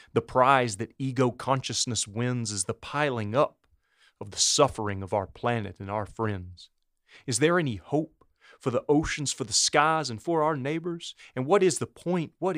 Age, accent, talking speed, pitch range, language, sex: 30-49, American, 180 wpm, 105-135 Hz, English, male